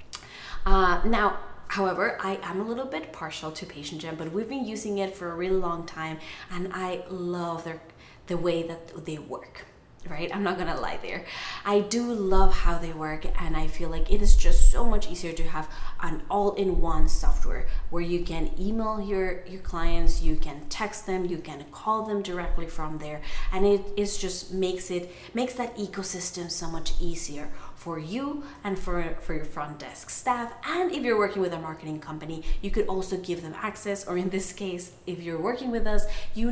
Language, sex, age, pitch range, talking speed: English, female, 20-39, 165-205 Hz, 195 wpm